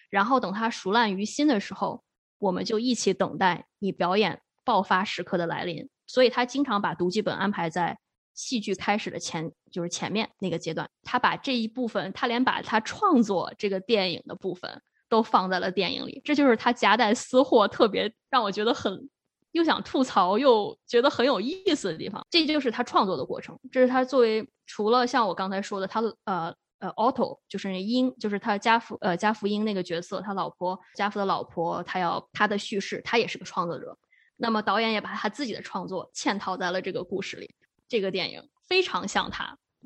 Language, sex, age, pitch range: Chinese, female, 20-39, 195-250 Hz